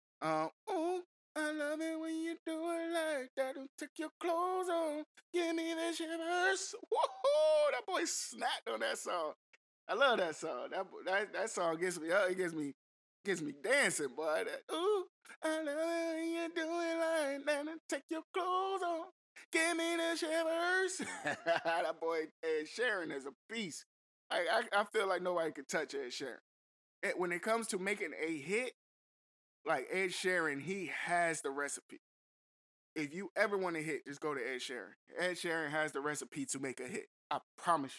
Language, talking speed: English, 185 wpm